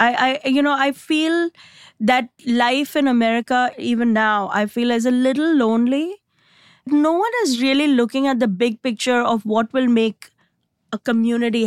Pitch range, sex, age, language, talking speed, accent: 230-290 Hz, female, 20-39, English, 170 wpm, Indian